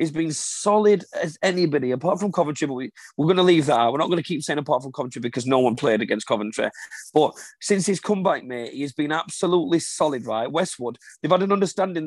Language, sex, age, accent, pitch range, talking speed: English, male, 30-49, British, 140-185 Hz, 230 wpm